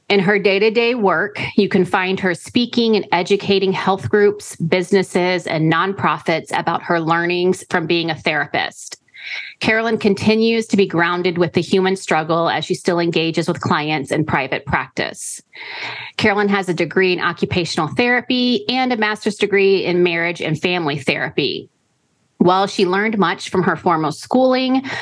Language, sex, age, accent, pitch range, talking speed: English, female, 30-49, American, 170-205 Hz, 160 wpm